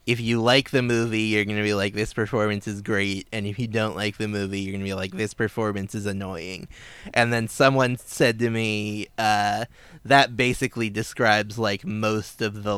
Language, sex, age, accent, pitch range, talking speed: English, male, 20-39, American, 100-115 Hz, 195 wpm